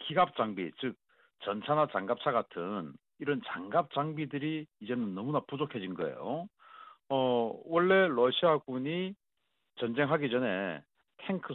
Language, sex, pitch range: Korean, male, 120-180 Hz